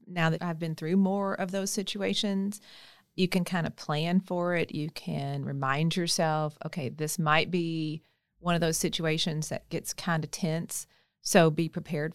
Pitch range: 170-215 Hz